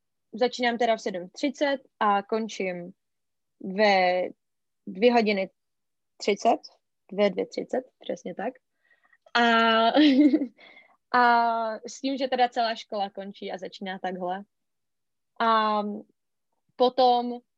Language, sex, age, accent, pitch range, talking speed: Czech, female, 20-39, native, 195-230 Hz, 90 wpm